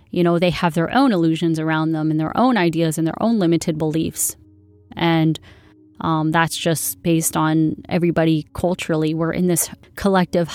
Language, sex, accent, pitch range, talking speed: English, female, American, 155-180 Hz, 170 wpm